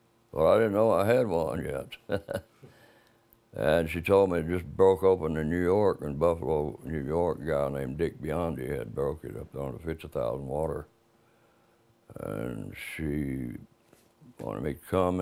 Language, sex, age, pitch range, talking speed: English, male, 60-79, 80-115 Hz, 170 wpm